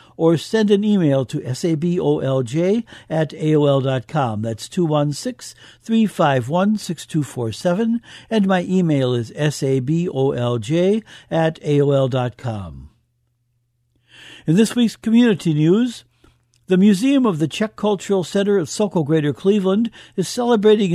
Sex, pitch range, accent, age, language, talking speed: male, 145-205 Hz, American, 60-79, English, 100 wpm